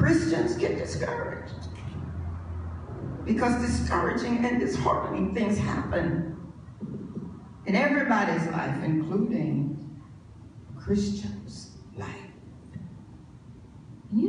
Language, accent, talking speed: English, American, 65 wpm